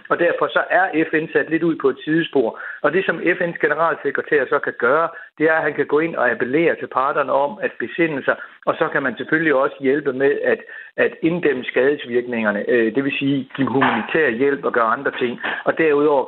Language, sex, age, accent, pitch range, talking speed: Danish, male, 60-79, native, 130-165 Hz, 220 wpm